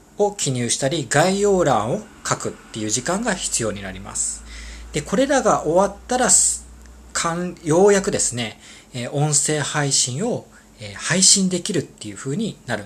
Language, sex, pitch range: Japanese, male, 120-195 Hz